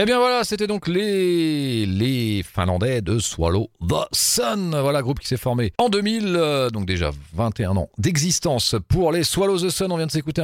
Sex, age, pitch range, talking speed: male, 40-59, 95-160 Hz, 200 wpm